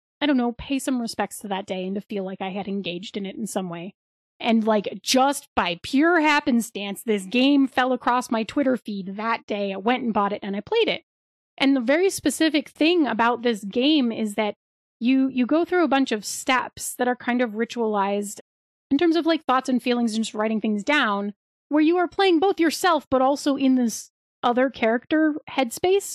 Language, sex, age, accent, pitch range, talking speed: English, female, 30-49, American, 225-290 Hz, 215 wpm